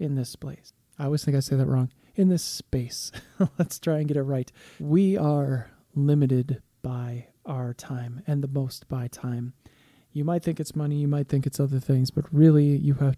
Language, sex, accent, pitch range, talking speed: English, male, American, 130-150 Hz, 205 wpm